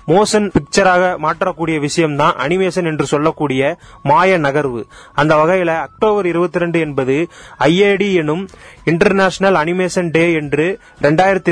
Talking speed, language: 105 wpm, Tamil